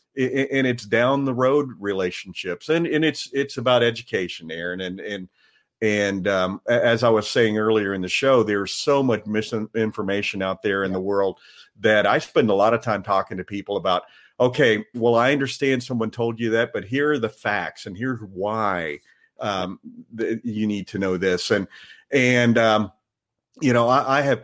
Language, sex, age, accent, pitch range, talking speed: English, male, 40-59, American, 100-130 Hz, 185 wpm